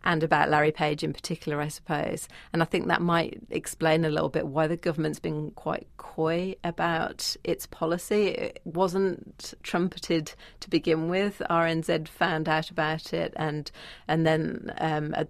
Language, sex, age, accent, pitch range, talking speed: English, female, 40-59, British, 155-170 Hz, 165 wpm